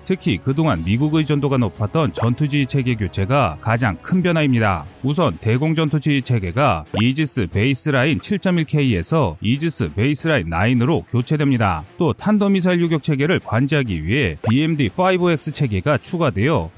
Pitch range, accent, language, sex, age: 115-155 Hz, native, Korean, male, 30-49